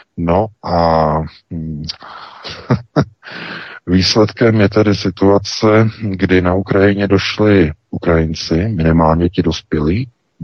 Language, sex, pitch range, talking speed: Czech, male, 85-105 Hz, 85 wpm